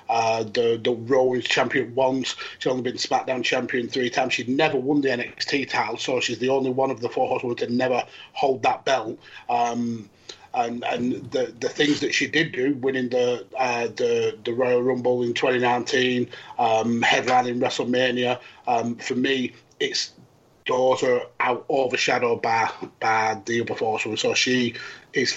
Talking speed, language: 170 wpm, English